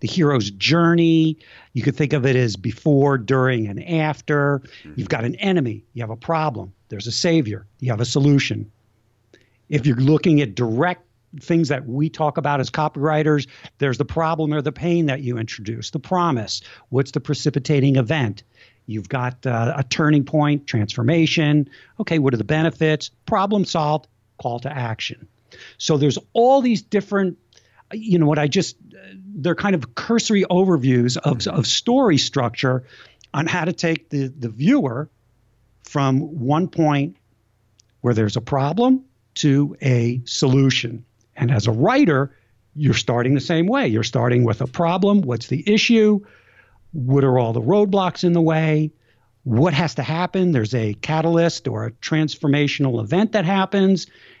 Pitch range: 120-165 Hz